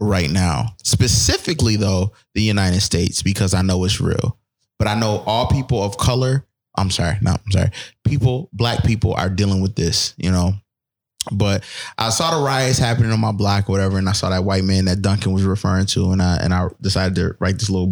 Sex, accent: male, American